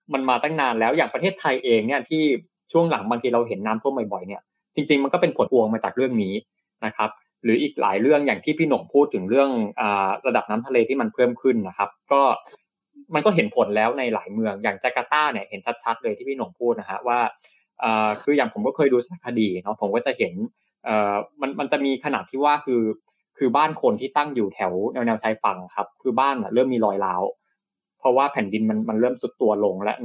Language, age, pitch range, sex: Thai, 20-39, 115-145 Hz, male